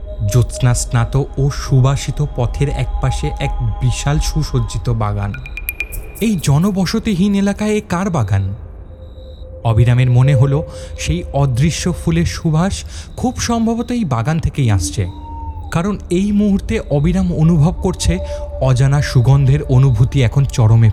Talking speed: 110 wpm